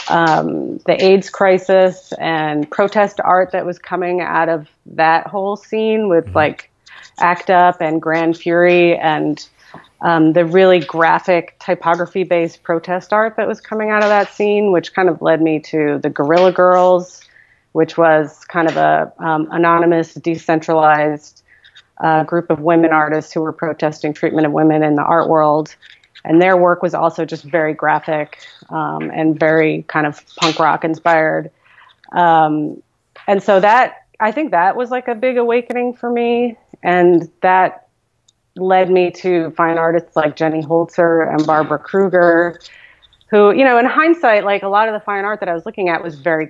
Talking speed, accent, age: 170 wpm, American, 30-49